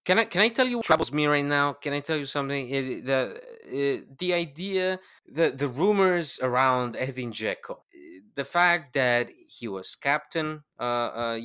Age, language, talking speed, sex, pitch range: 20-39, English, 185 wpm, male, 110-145 Hz